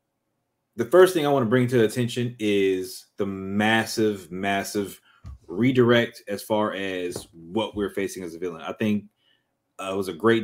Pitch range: 95-115 Hz